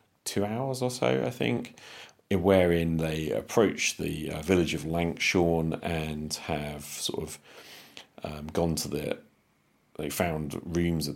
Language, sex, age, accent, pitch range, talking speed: English, male, 40-59, British, 75-85 Hz, 140 wpm